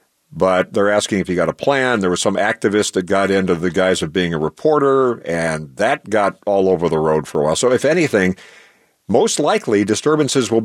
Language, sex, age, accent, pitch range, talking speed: English, male, 50-69, American, 95-130 Hz, 215 wpm